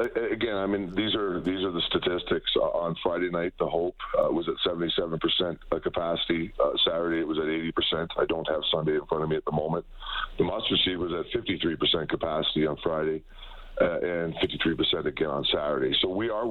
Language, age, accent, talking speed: English, 50-69, American, 195 wpm